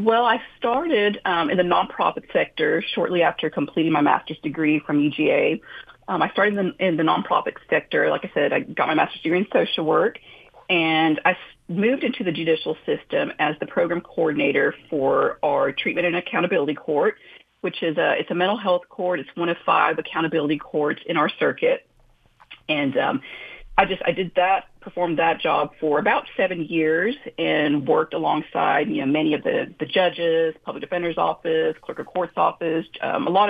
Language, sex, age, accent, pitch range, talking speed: English, female, 40-59, American, 155-220 Hz, 185 wpm